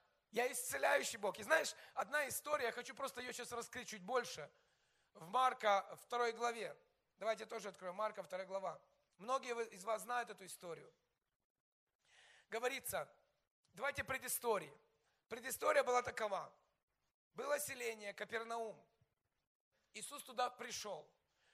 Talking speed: 125 wpm